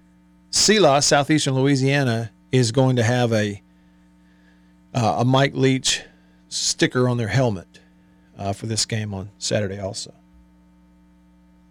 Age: 50-69